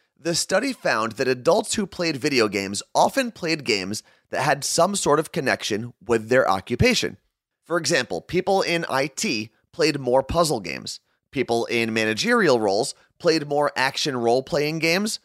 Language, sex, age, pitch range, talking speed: English, male, 30-49, 115-165 Hz, 155 wpm